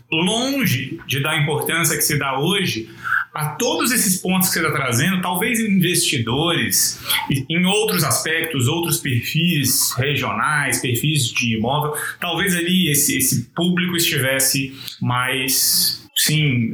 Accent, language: Brazilian, Portuguese